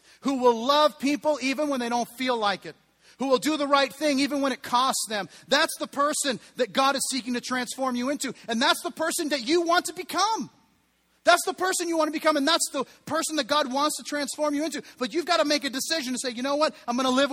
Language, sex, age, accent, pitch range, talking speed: English, male, 40-59, American, 165-270 Hz, 265 wpm